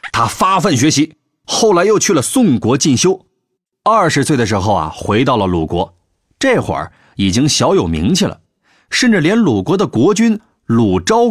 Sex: male